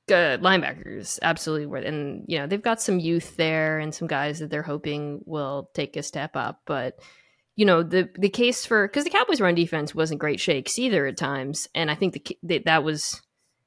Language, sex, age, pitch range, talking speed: English, female, 20-39, 165-220 Hz, 200 wpm